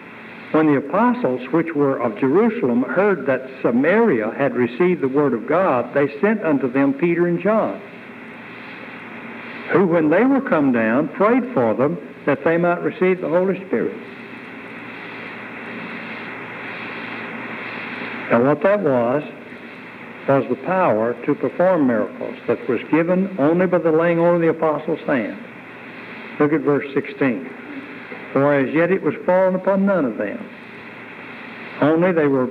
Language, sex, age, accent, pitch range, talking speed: English, male, 60-79, American, 145-215 Hz, 145 wpm